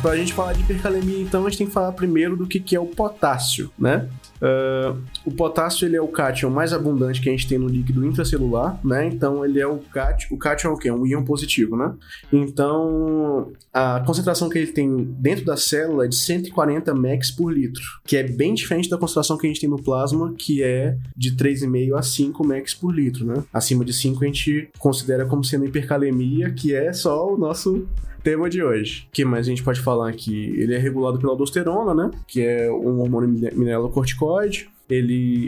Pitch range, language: 130-155 Hz, Portuguese